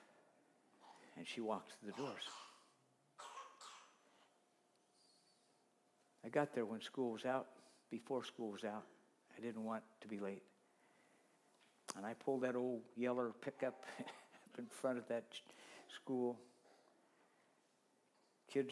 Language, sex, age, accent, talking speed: English, male, 60-79, American, 115 wpm